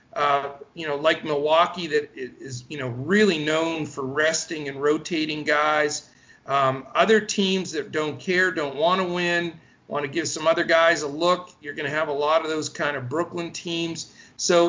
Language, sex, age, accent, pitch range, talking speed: English, male, 50-69, American, 150-190 Hz, 190 wpm